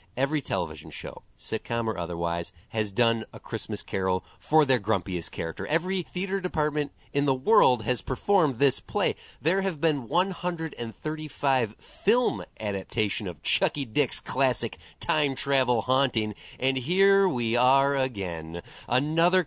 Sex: male